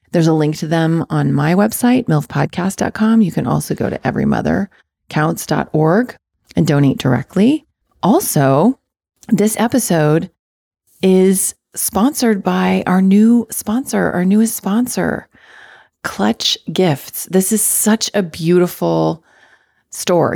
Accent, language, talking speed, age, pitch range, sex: American, English, 110 wpm, 30-49, 155-205 Hz, female